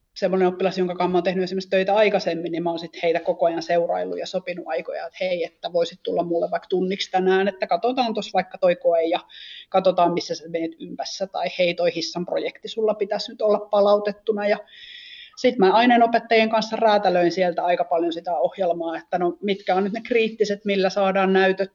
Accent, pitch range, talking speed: native, 175-205 Hz, 195 wpm